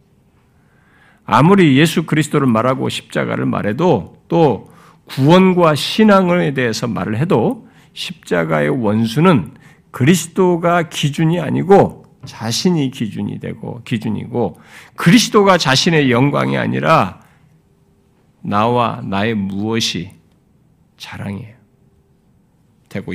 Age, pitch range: 50-69, 110-175 Hz